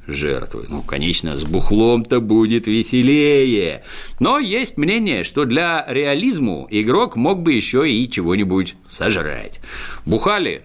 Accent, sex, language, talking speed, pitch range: native, male, Russian, 120 wpm, 90-140 Hz